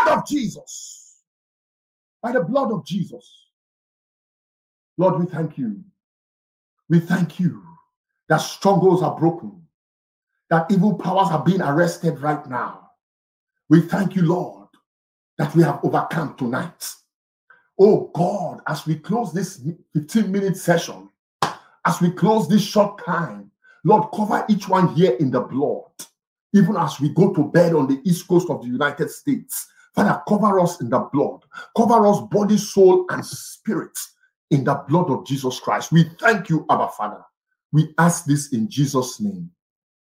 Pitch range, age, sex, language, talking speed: 130-200 Hz, 50-69, male, English, 150 wpm